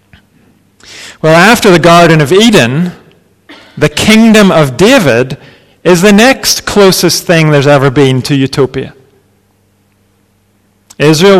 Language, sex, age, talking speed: English, male, 40-59, 110 wpm